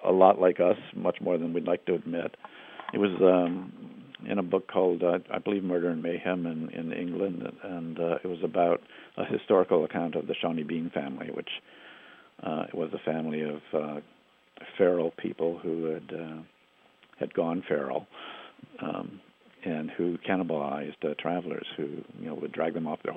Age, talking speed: 50-69, 180 wpm